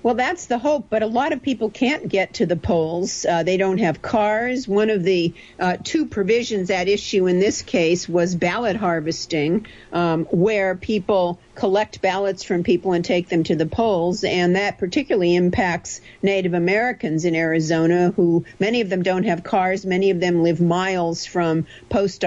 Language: English